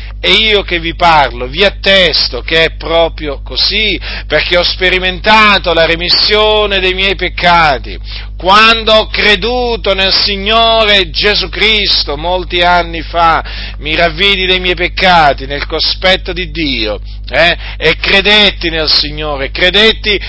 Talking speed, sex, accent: 130 wpm, male, native